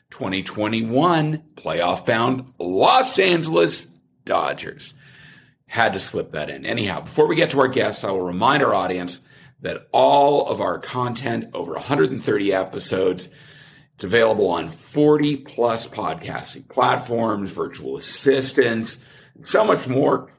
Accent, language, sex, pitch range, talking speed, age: American, English, male, 100-140 Hz, 125 wpm, 50-69